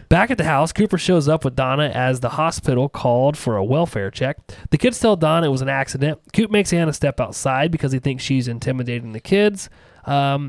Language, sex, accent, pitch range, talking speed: English, male, American, 125-170 Hz, 220 wpm